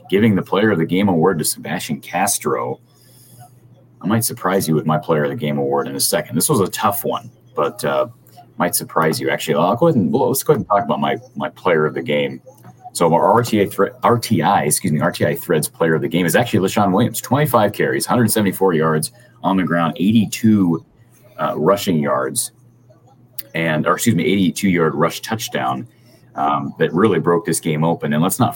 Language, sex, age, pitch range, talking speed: English, male, 30-49, 80-120 Hz, 205 wpm